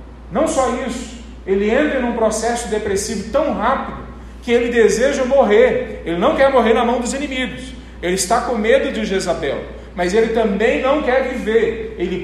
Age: 40-59